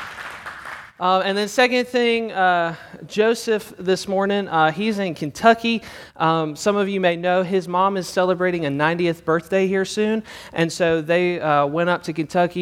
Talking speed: 170 wpm